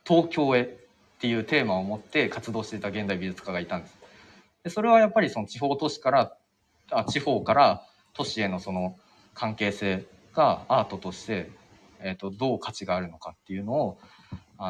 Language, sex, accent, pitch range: Japanese, male, native, 100-165 Hz